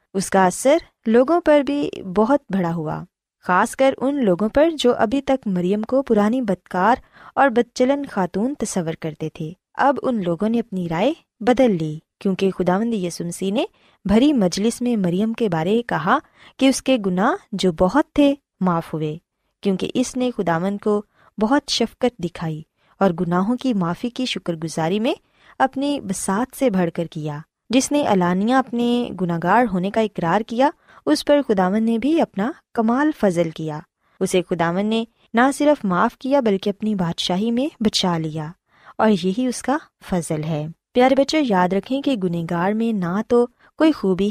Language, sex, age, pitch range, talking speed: Urdu, female, 20-39, 180-255 Hz, 170 wpm